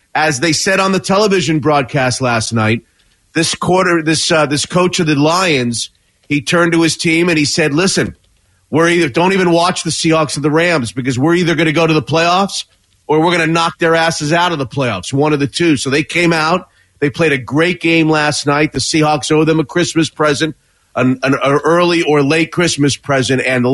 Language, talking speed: English, 225 wpm